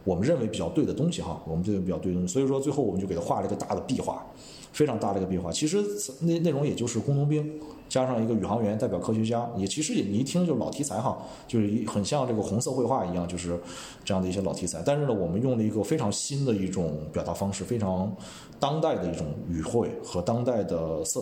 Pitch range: 95-130 Hz